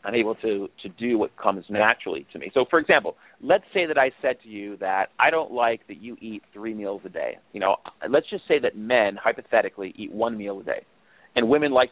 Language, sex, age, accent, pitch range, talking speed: English, male, 40-59, American, 110-155 Hz, 235 wpm